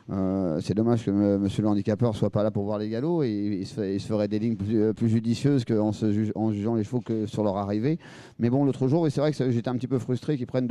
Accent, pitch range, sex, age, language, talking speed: French, 105-120 Hz, male, 40-59, French, 315 wpm